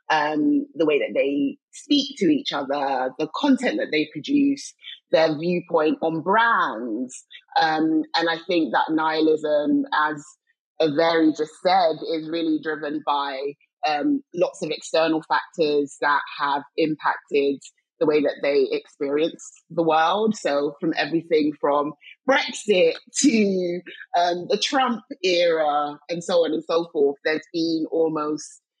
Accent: British